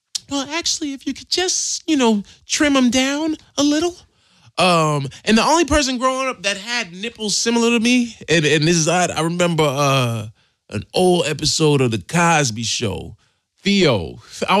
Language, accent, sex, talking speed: English, American, male, 175 wpm